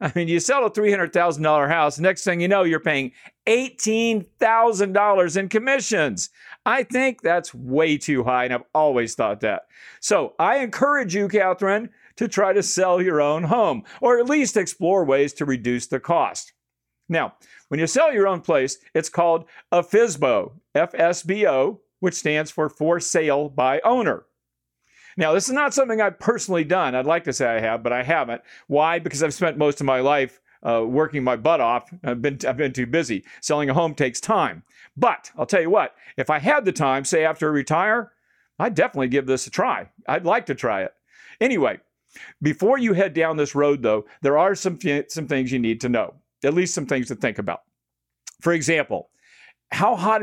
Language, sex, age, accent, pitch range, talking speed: English, male, 50-69, American, 140-200 Hz, 190 wpm